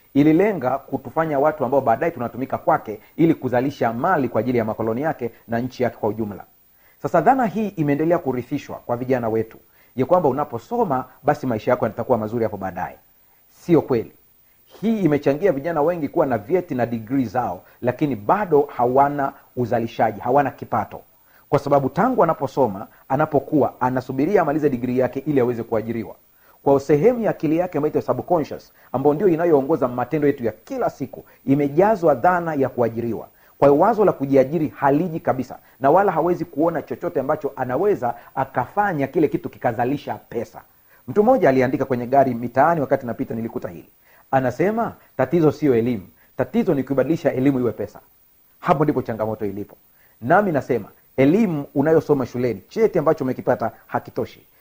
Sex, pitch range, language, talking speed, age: male, 120-150 Hz, Swahili, 150 wpm, 40-59